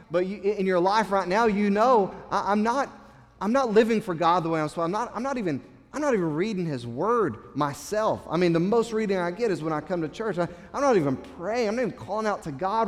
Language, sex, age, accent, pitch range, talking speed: English, male, 30-49, American, 130-200 Hz, 275 wpm